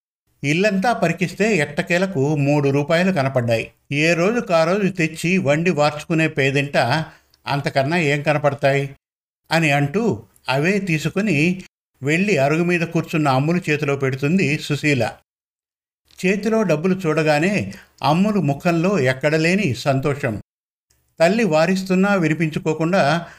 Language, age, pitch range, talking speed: Telugu, 50-69, 145-180 Hz, 100 wpm